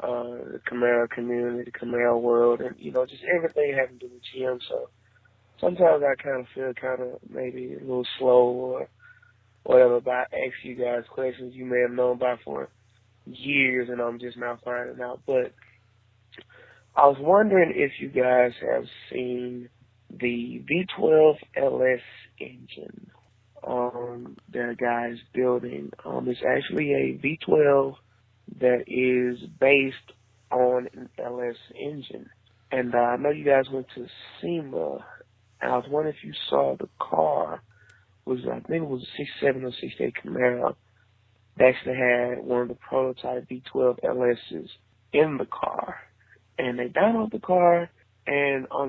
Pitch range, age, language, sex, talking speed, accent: 120-135 Hz, 20-39, English, male, 155 wpm, American